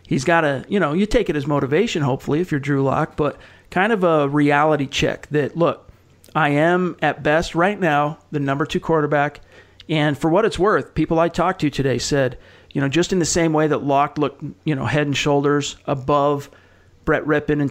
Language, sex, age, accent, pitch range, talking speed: English, male, 40-59, American, 135-155 Hz, 215 wpm